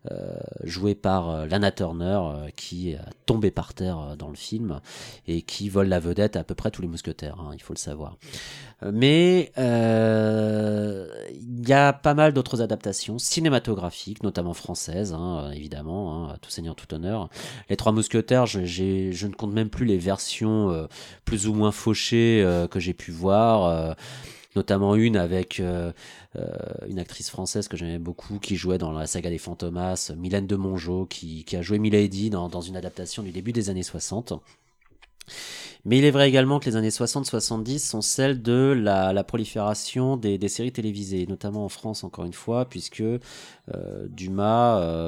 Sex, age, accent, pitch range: male, 30-49, French, 90-110 Hz